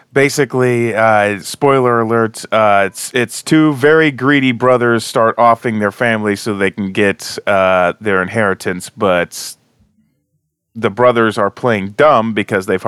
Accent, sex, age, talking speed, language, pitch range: American, male, 30-49, 140 wpm, English, 95-125 Hz